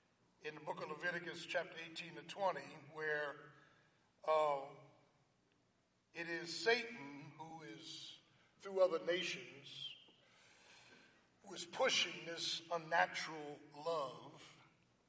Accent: American